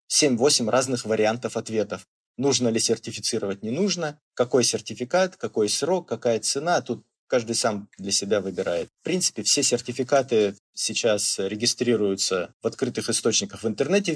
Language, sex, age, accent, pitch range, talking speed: Russian, male, 30-49, native, 105-130 Hz, 135 wpm